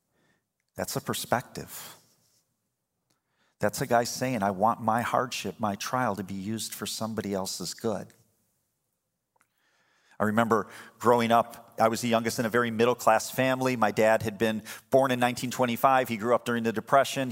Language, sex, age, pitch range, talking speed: English, male, 40-59, 105-125 Hz, 160 wpm